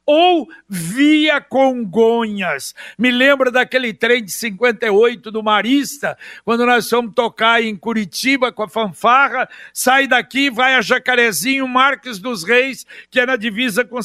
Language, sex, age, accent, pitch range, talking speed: Portuguese, male, 60-79, Brazilian, 220-260 Hz, 140 wpm